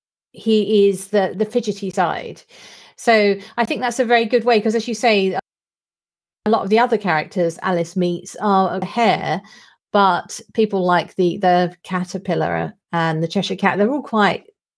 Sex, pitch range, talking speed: female, 180-230 Hz, 170 wpm